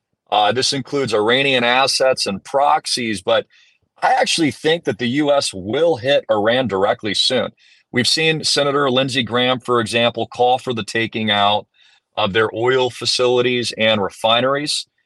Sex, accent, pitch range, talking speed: male, American, 105-130 Hz, 145 wpm